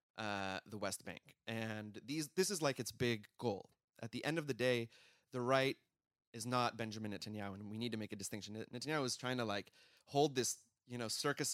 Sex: male